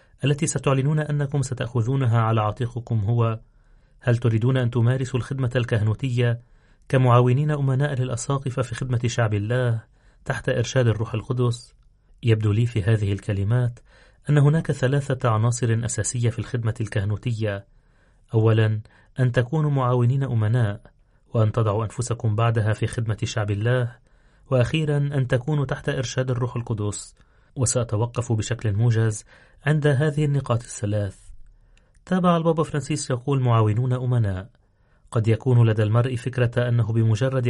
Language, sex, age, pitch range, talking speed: Arabic, male, 30-49, 110-130 Hz, 125 wpm